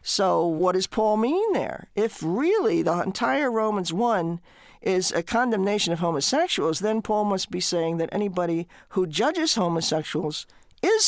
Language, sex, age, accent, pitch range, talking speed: English, male, 50-69, American, 160-205 Hz, 150 wpm